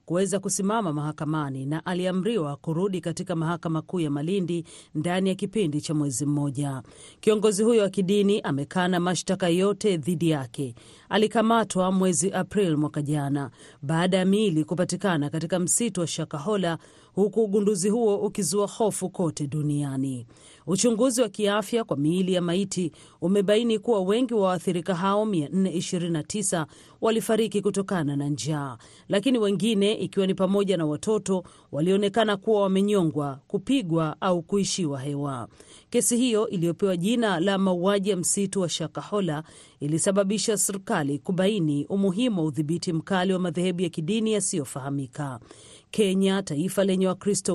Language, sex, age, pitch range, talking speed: Swahili, female, 40-59, 155-205 Hz, 130 wpm